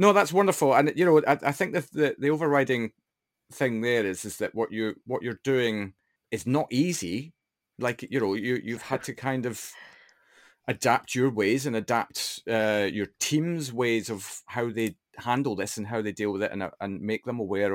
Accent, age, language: British, 30-49, English